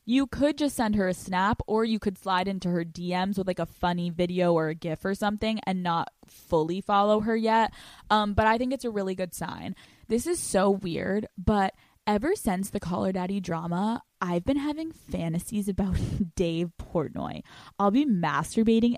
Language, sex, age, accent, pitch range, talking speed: English, female, 10-29, American, 180-235 Hz, 190 wpm